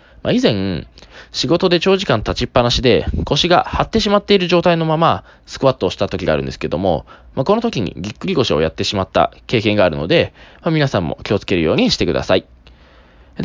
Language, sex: Japanese, male